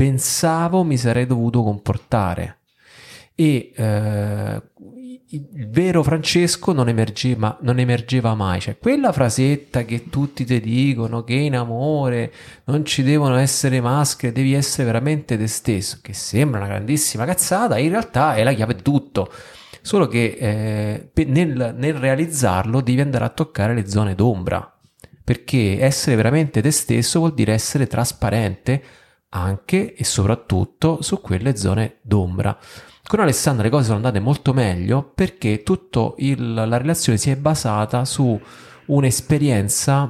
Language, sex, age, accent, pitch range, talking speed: Italian, male, 30-49, native, 105-140 Hz, 140 wpm